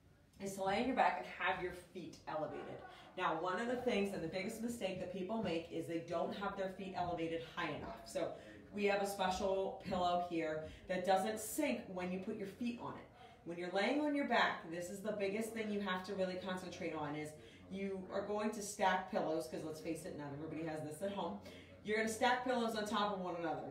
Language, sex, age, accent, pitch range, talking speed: English, female, 30-49, American, 170-205 Hz, 235 wpm